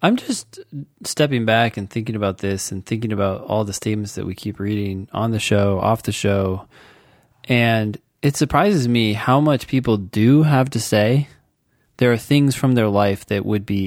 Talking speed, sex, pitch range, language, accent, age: 190 wpm, male, 100-125 Hz, English, American, 20-39